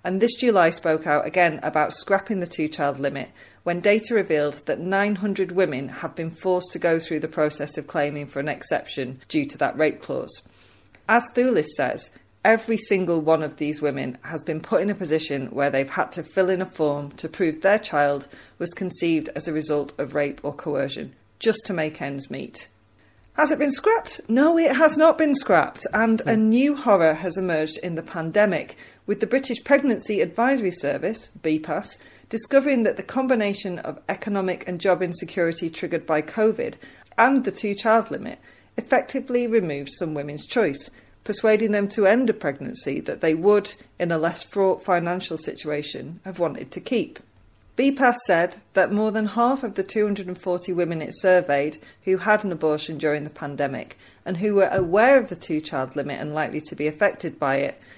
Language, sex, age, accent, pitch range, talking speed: English, female, 40-59, British, 155-210 Hz, 185 wpm